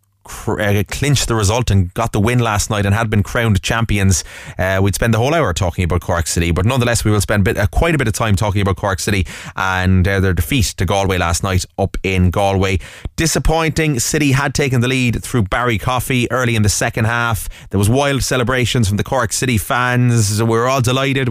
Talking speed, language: 220 wpm, English